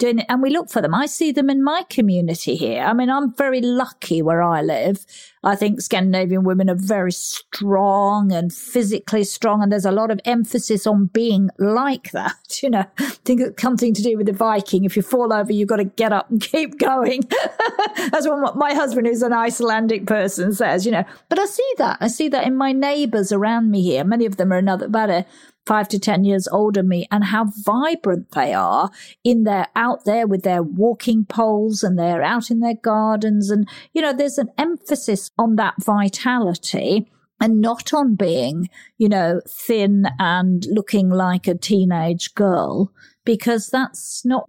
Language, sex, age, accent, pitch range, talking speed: English, female, 50-69, British, 195-245 Hz, 195 wpm